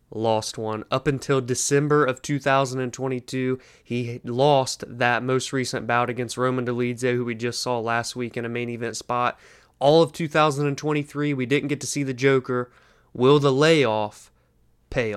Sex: male